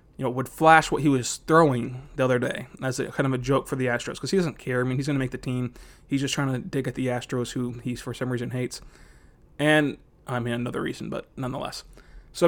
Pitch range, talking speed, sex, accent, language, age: 130-150 Hz, 260 wpm, male, American, English, 20-39